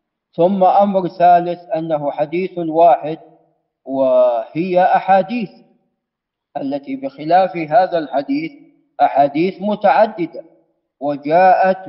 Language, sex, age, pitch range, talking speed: Arabic, male, 40-59, 165-205 Hz, 75 wpm